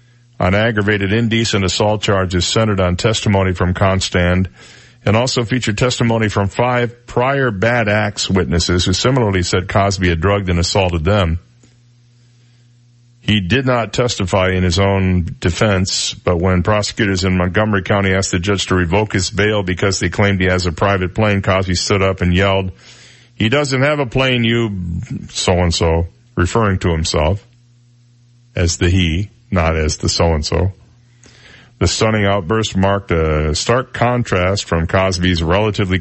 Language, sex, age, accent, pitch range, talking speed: English, male, 50-69, American, 90-120 Hz, 150 wpm